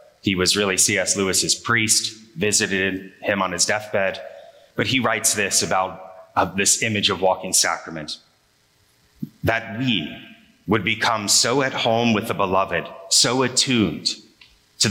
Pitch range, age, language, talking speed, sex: 95-115 Hz, 30-49, English, 140 wpm, male